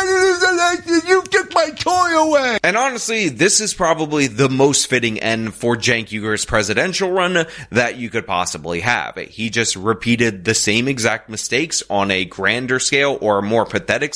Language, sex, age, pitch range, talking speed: English, male, 30-49, 105-150 Hz, 145 wpm